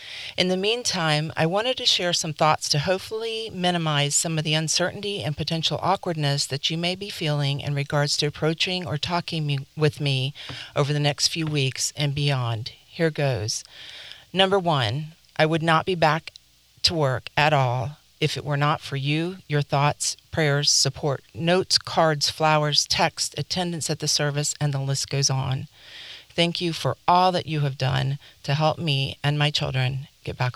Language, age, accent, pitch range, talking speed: English, 50-69, American, 135-165 Hz, 180 wpm